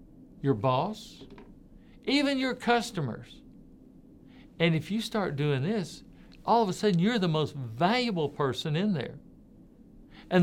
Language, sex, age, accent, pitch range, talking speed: English, male, 60-79, American, 135-175 Hz, 130 wpm